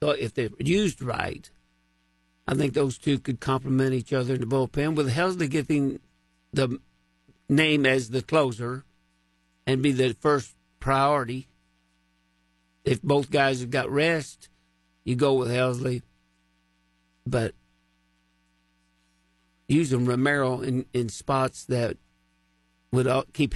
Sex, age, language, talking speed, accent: male, 50-69, English, 120 wpm, American